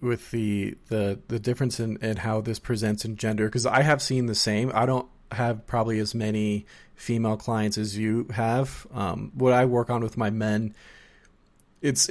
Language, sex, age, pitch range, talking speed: English, male, 30-49, 105-125 Hz, 190 wpm